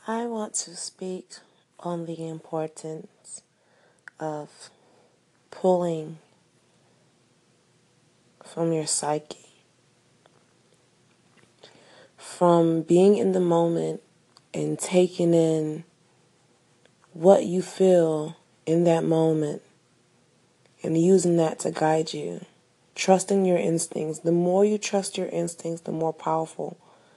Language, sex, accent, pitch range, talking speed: English, female, American, 160-180 Hz, 95 wpm